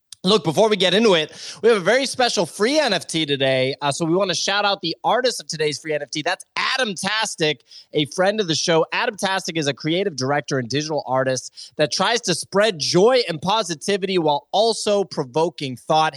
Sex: male